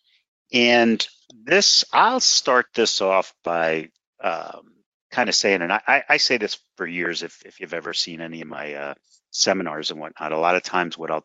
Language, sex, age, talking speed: English, male, 40-59, 185 wpm